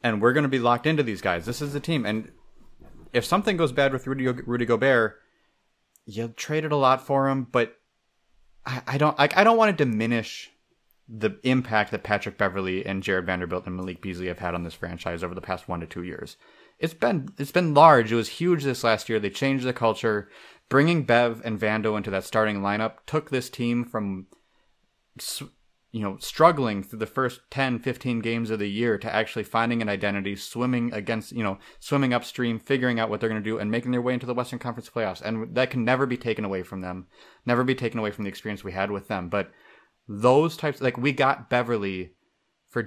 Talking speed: 220 wpm